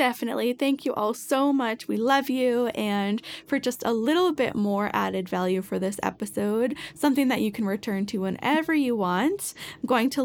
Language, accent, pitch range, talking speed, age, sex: English, American, 190-260 Hz, 195 wpm, 10-29, female